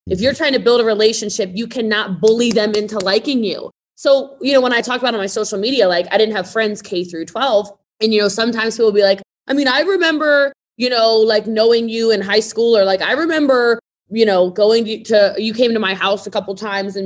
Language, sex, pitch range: English, female, 205-280 Hz